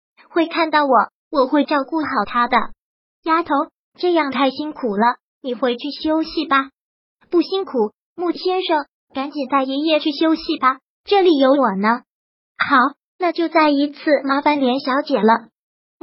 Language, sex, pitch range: Chinese, male, 265-320 Hz